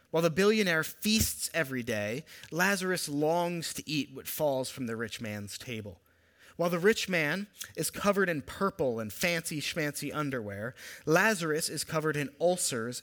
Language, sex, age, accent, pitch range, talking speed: English, male, 30-49, American, 115-170 Hz, 150 wpm